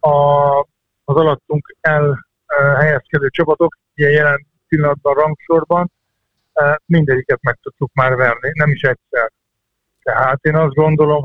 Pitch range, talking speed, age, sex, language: 140-160 Hz, 125 wpm, 50-69, male, Hungarian